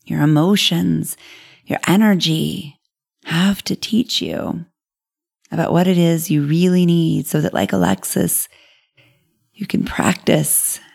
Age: 30-49